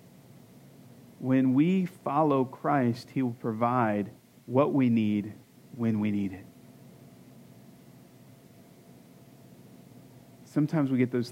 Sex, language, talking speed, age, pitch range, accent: male, English, 95 wpm, 40-59, 120-160 Hz, American